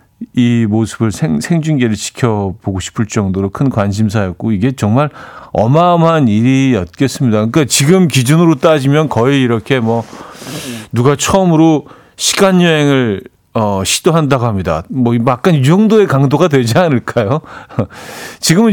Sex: male